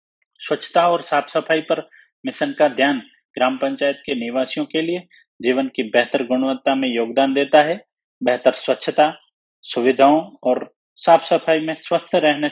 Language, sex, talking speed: Hindi, male, 150 wpm